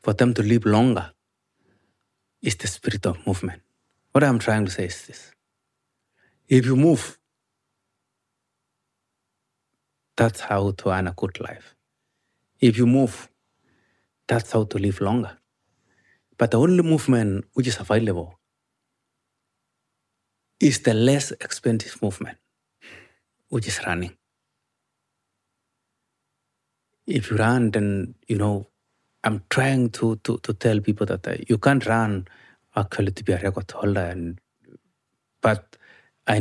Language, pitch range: English, 100-115 Hz